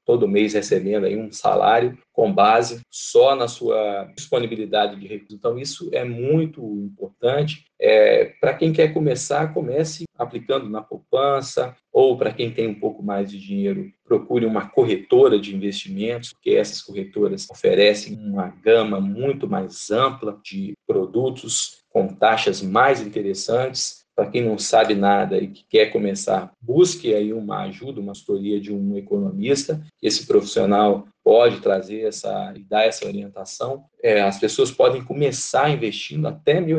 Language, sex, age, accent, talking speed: Portuguese, male, 40-59, Brazilian, 145 wpm